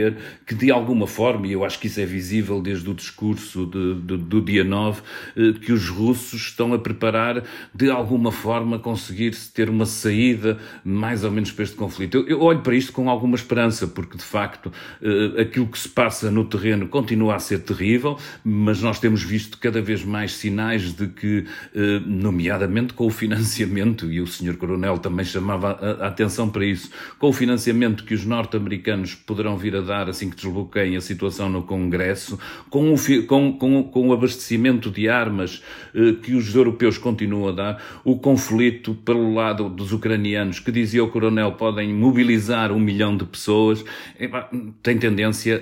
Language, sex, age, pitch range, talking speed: Portuguese, male, 40-59, 100-115 Hz, 175 wpm